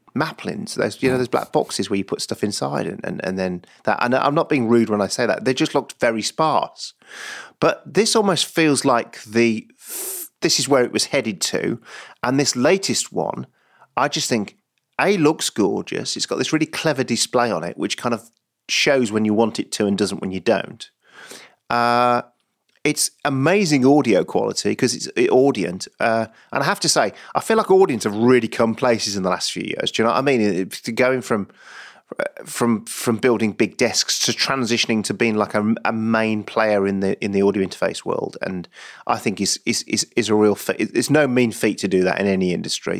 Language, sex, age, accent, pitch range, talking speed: English, male, 40-59, British, 105-130 Hz, 215 wpm